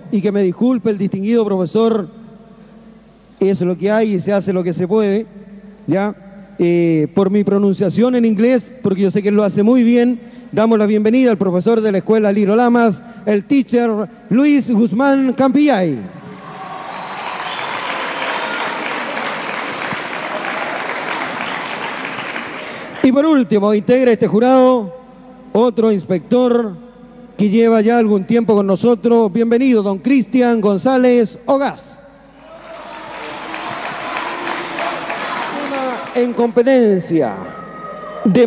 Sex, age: male, 40-59